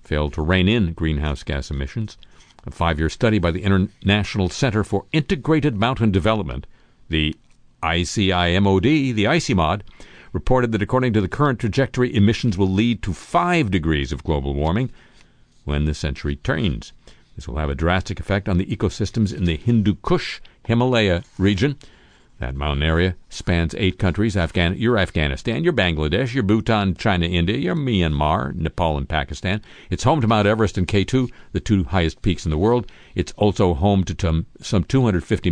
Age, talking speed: 60-79, 160 wpm